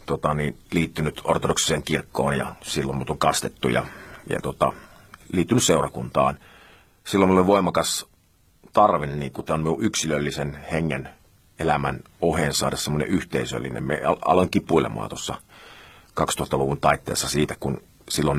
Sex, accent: male, native